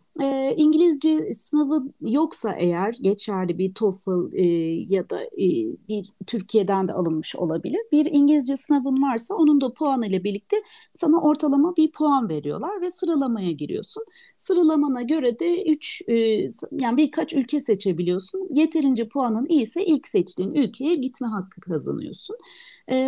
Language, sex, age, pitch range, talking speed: Turkish, female, 40-59, 200-310 Hz, 140 wpm